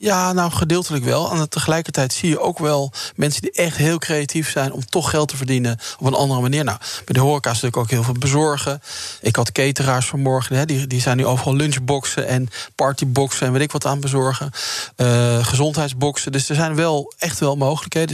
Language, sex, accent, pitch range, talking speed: Dutch, male, Dutch, 130-155 Hz, 200 wpm